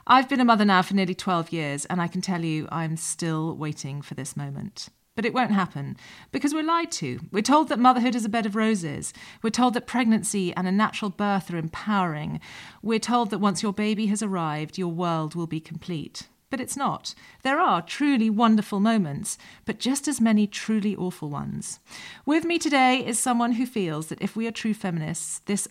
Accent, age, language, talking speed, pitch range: British, 40-59, English, 210 wpm, 170-235 Hz